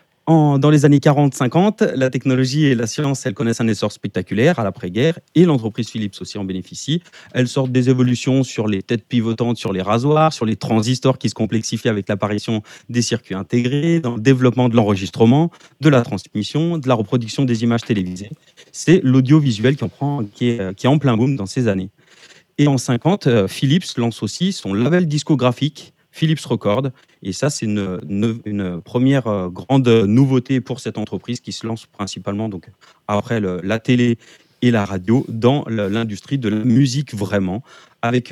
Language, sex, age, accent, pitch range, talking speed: French, male, 30-49, French, 105-135 Hz, 180 wpm